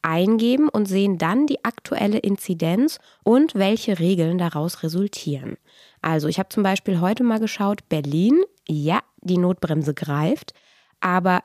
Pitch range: 170-235 Hz